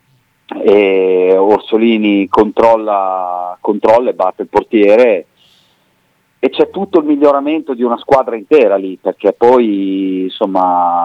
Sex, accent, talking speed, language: male, native, 110 wpm, Italian